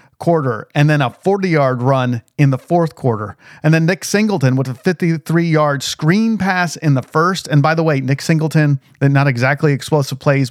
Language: English